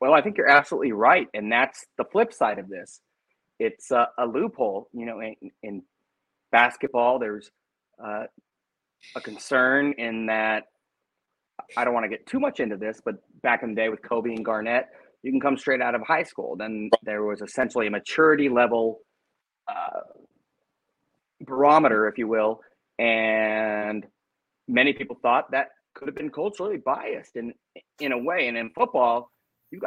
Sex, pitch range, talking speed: male, 110-140 Hz, 170 wpm